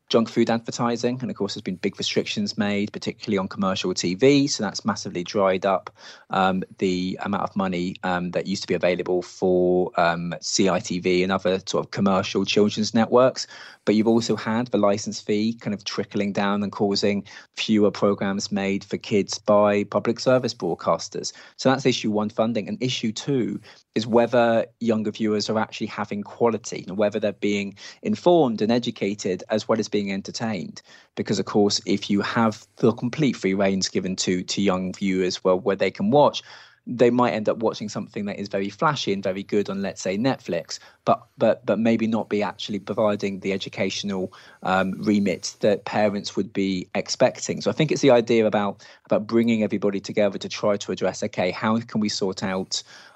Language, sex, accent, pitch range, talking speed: English, male, British, 95-115 Hz, 190 wpm